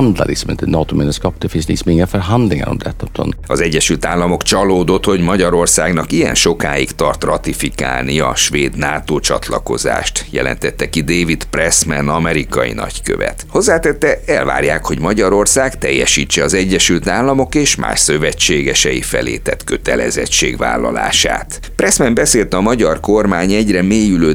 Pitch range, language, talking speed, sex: 75-100 Hz, Hungarian, 100 wpm, male